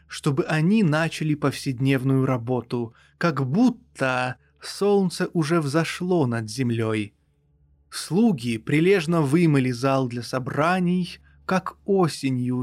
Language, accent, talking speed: Russian, native, 95 wpm